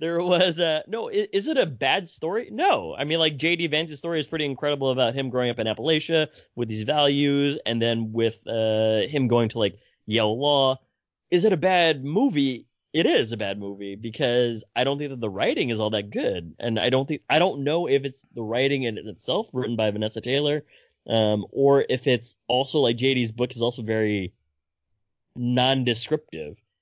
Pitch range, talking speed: 110-150 Hz, 195 wpm